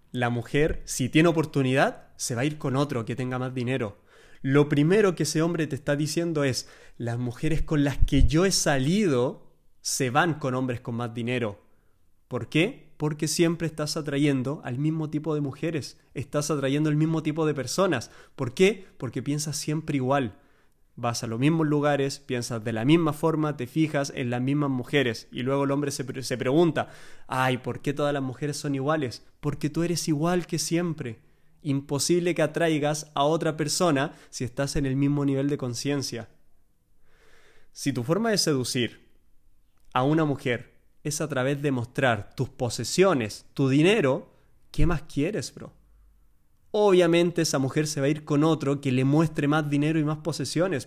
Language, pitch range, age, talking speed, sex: Spanish, 125-155 Hz, 20-39, 180 wpm, male